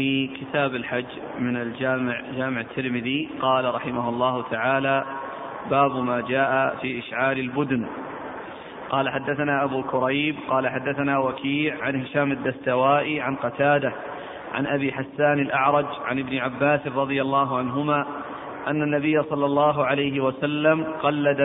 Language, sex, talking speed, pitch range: Arabic, male, 130 wpm, 135-155 Hz